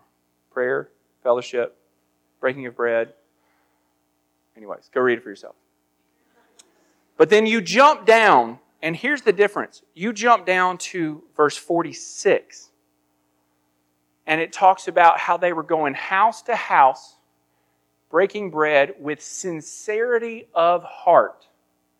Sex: male